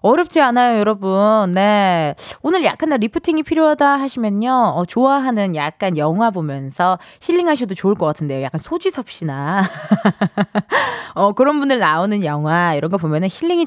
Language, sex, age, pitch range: Korean, female, 20-39, 180-295 Hz